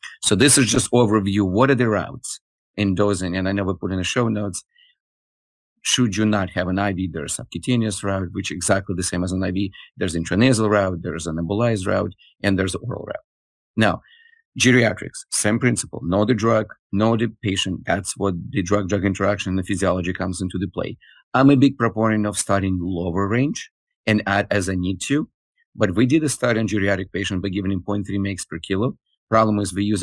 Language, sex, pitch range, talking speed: English, male, 95-110 Hz, 210 wpm